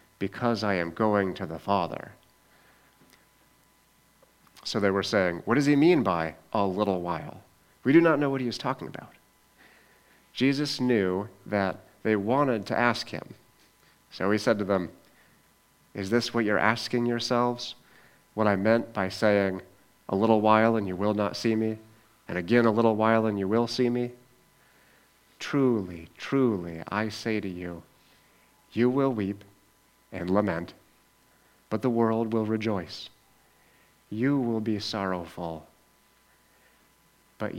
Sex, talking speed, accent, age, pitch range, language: male, 145 wpm, American, 30-49, 95-120 Hz, English